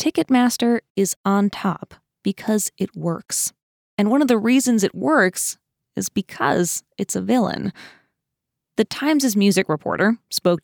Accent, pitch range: American, 175-220 Hz